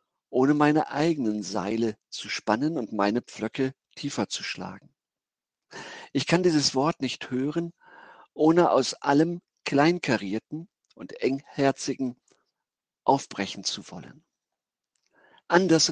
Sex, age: male, 50-69